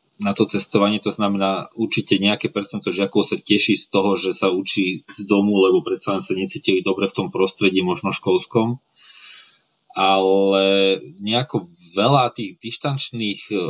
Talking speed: 145 wpm